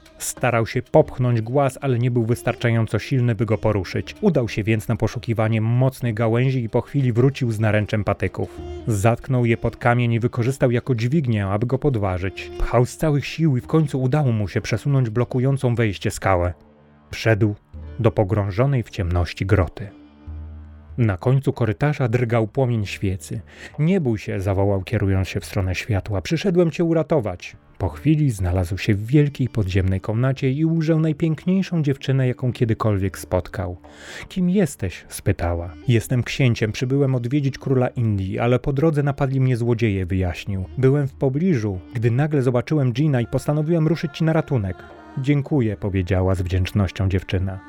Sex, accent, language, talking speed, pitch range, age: male, native, Polish, 155 wpm, 100-135 Hz, 30-49